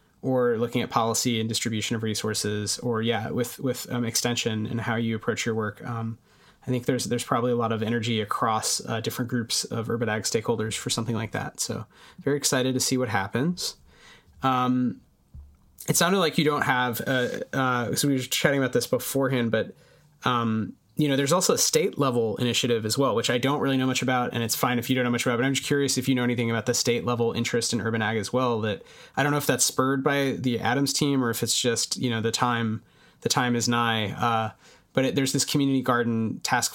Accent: American